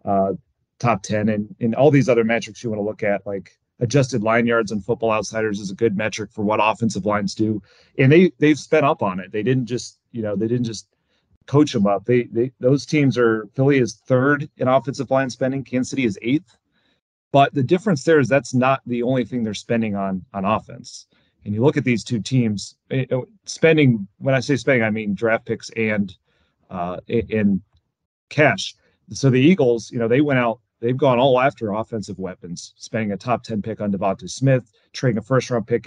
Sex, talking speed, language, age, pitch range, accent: male, 210 wpm, English, 30-49, 105-135 Hz, American